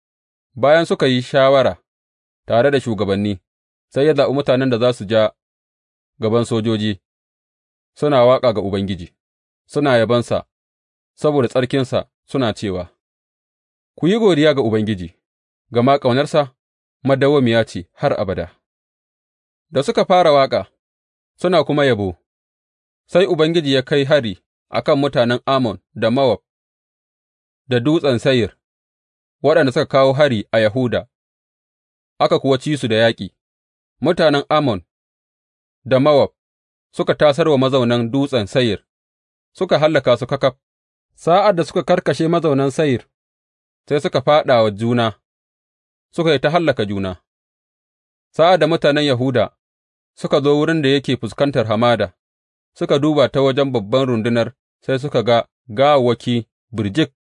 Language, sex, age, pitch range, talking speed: English, male, 30-49, 90-135 Hz, 120 wpm